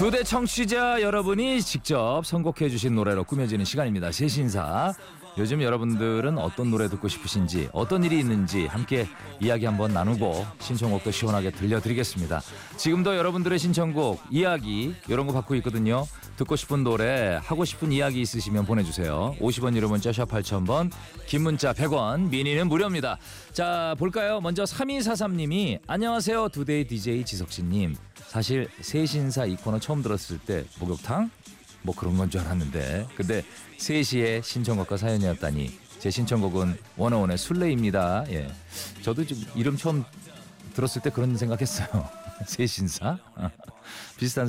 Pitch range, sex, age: 100-155 Hz, male, 40-59